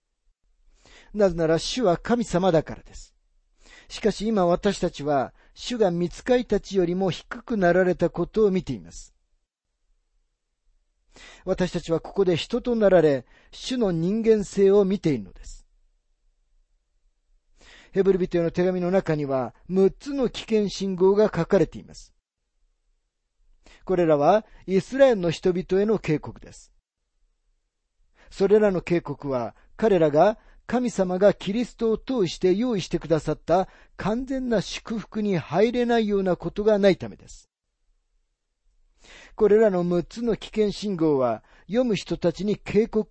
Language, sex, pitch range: Japanese, male, 150-210 Hz